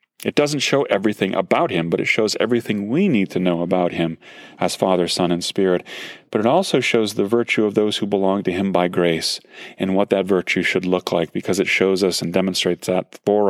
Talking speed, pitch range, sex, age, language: 220 wpm, 95-115 Hz, male, 30-49, English